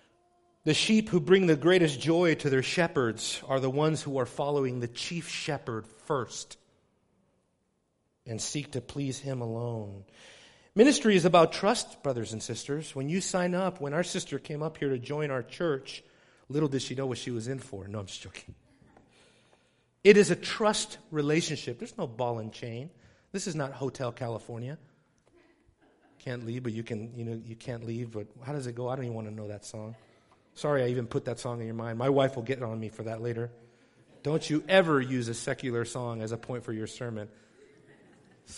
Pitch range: 120-175 Hz